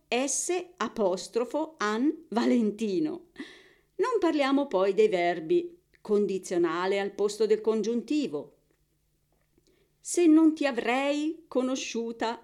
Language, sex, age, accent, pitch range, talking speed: Italian, female, 40-59, native, 195-295 Hz, 90 wpm